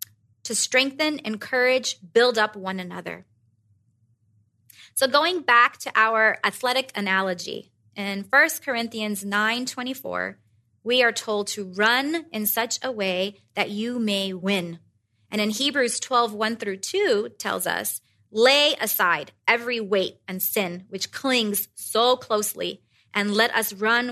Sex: female